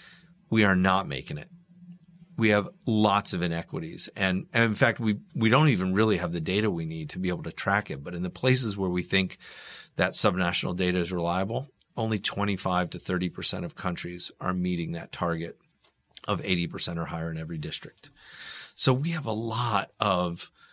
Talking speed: 195 wpm